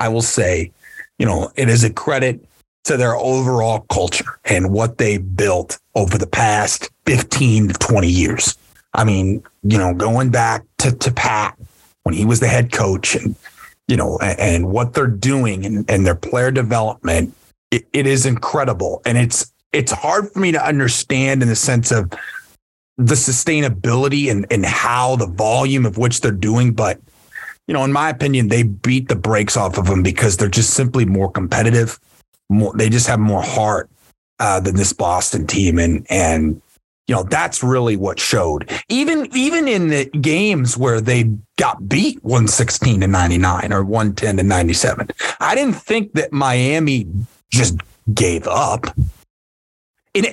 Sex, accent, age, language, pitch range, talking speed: male, American, 30-49, English, 100-130 Hz, 170 wpm